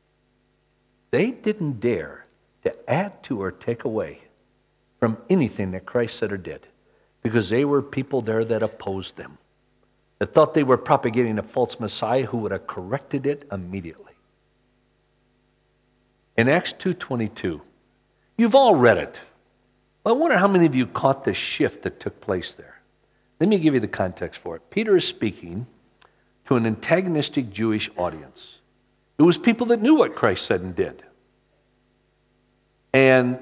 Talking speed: 155 wpm